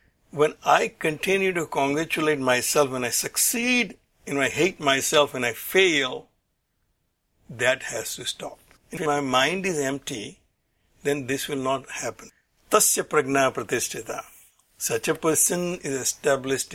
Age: 60-79